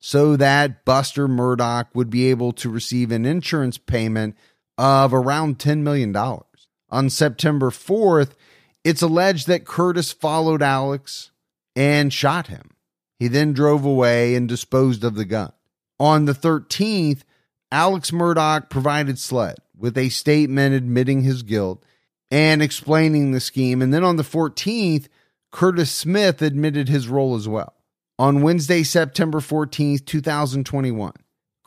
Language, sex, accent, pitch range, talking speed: English, male, American, 125-155 Hz, 135 wpm